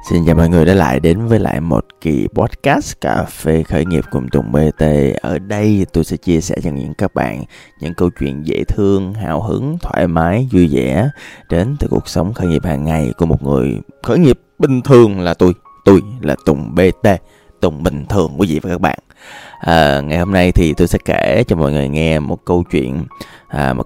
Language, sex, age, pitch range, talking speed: Vietnamese, male, 20-39, 75-95 Hz, 210 wpm